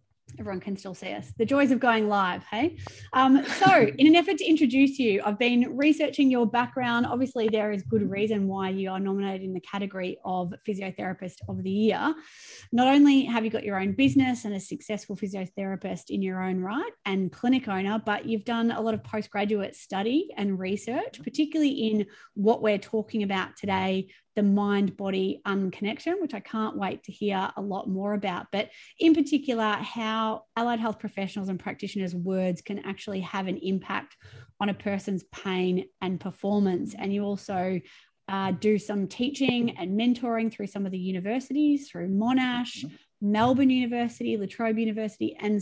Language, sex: English, female